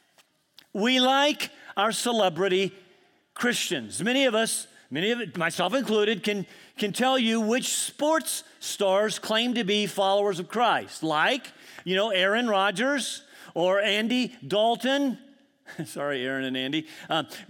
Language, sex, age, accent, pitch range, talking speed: English, male, 40-59, American, 195-255 Hz, 130 wpm